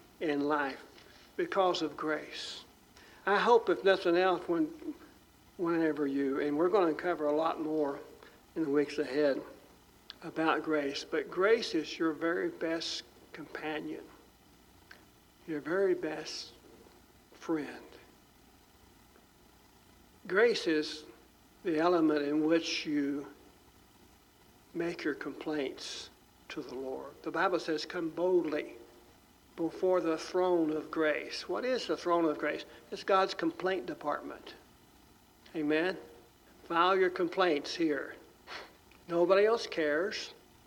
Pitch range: 155-190 Hz